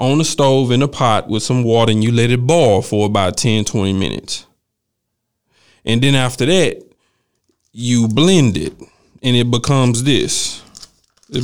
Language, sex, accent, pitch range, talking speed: English, male, American, 115-140 Hz, 155 wpm